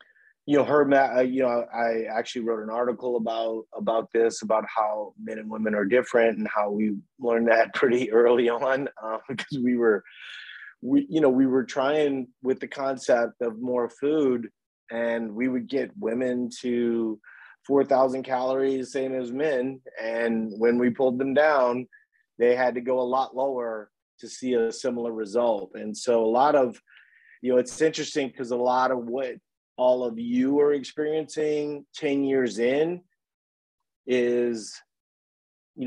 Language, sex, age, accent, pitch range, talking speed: English, male, 30-49, American, 115-135 Hz, 160 wpm